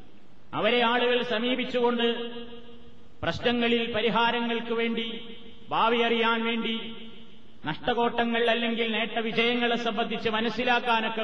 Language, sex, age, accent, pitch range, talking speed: Malayalam, male, 30-49, native, 220-245 Hz, 75 wpm